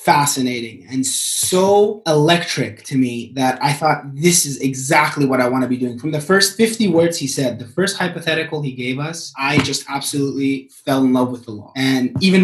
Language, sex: English, male